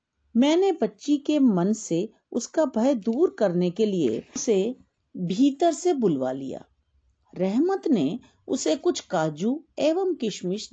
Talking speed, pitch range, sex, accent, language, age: 135 wpm, 180-295 Hz, female, native, Hindi, 50-69